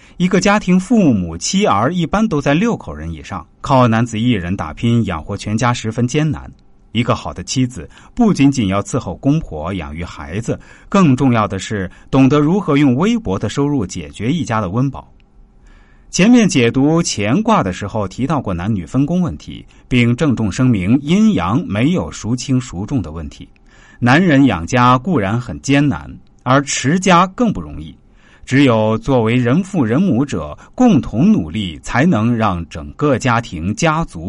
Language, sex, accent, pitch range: Chinese, male, native, 95-155 Hz